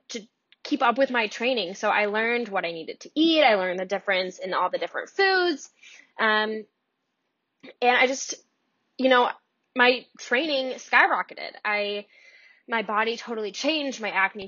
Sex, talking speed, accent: female, 155 wpm, American